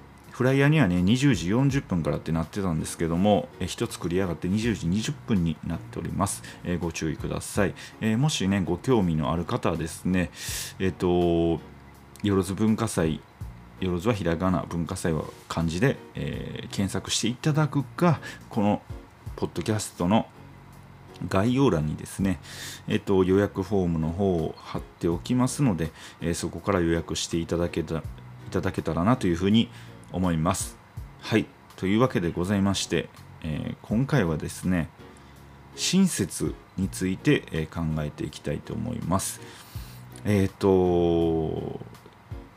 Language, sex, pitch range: Japanese, male, 80-115 Hz